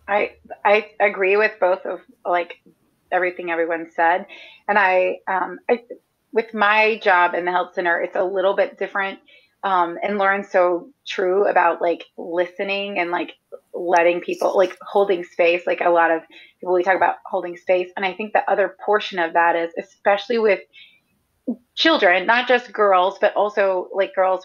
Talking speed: 170 wpm